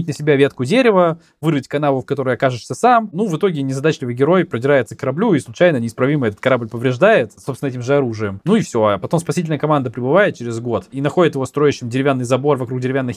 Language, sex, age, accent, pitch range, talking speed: Russian, male, 20-39, native, 125-170 Hz, 210 wpm